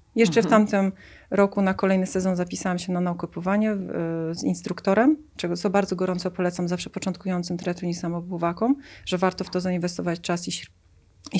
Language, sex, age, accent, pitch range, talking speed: Polish, female, 30-49, native, 175-205 Hz, 145 wpm